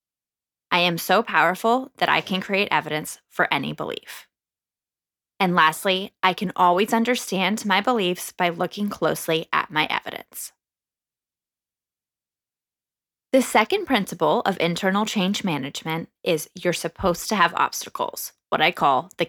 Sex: female